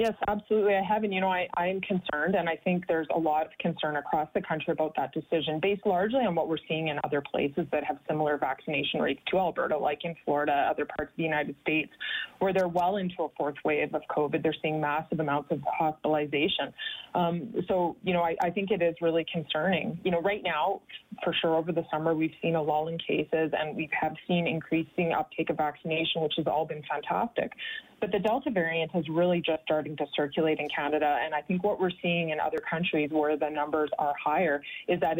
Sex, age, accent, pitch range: female, 20-39, American, 155-185 Hz